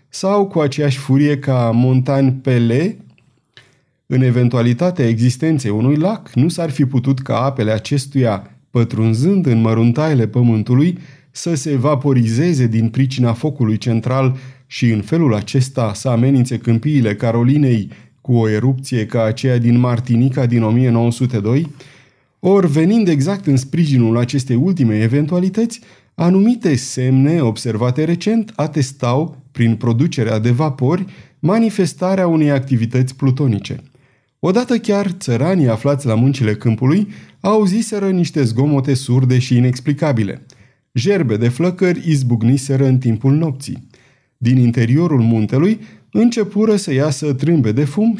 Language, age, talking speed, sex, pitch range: Romanian, 30-49, 120 wpm, male, 120-155 Hz